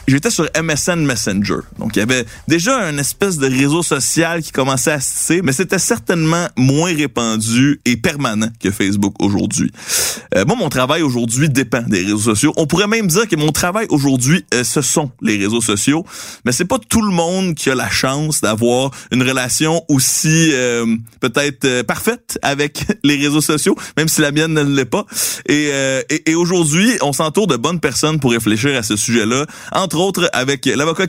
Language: French